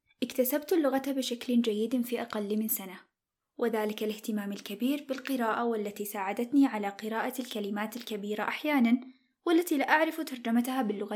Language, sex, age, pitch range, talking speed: Arabic, female, 10-29, 225-275 Hz, 130 wpm